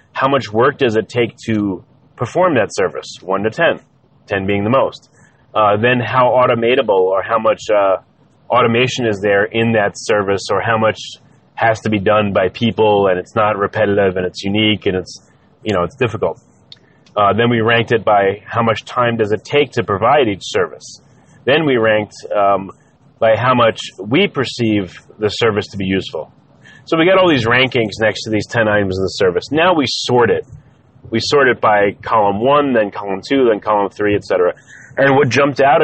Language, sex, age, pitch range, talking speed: English, male, 30-49, 105-125 Hz, 200 wpm